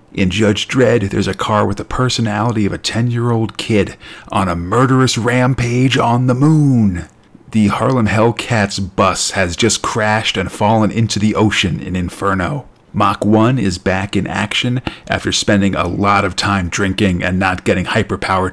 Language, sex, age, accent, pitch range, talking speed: English, male, 40-59, American, 100-120 Hz, 170 wpm